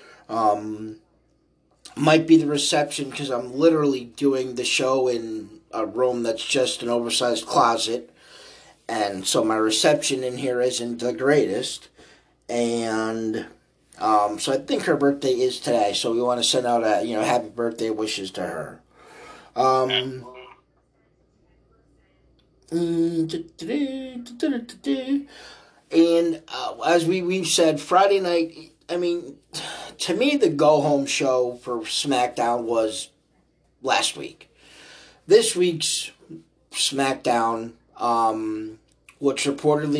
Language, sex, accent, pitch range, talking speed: English, male, American, 120-155 Hz, 115 wpm